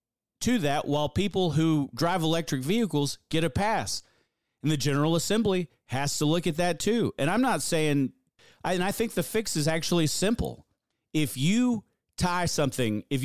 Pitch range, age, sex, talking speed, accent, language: 130-180 Hz, 40-59, male, 175 wpm, American, English